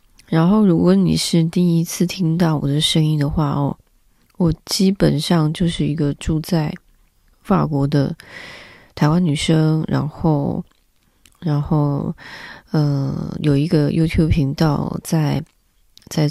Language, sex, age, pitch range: Chinese, female, 20-39, 145-175 Hz